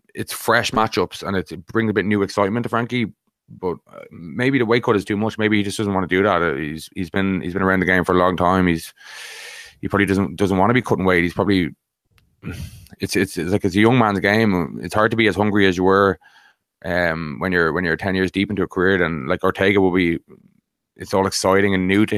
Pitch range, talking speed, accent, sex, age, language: 90-100 Hz, 250 wpm, Irish, male, 20-39, English